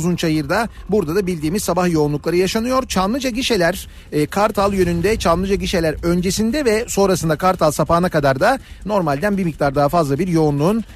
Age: 40-59